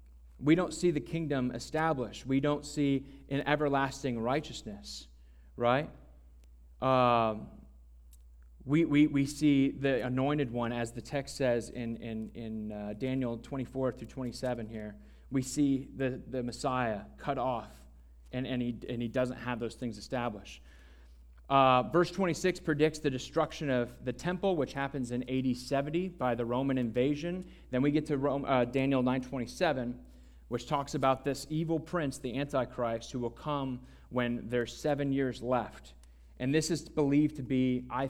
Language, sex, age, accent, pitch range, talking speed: English, male, 30-49, American, 115-145 Hz, 155 wpm